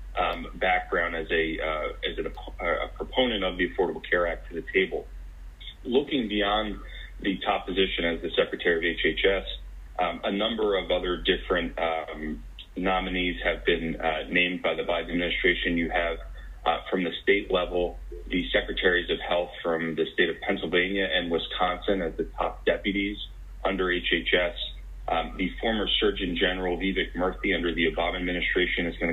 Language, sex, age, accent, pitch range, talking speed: English, male, 30-49, American, 85-100 Hz, 165 wpm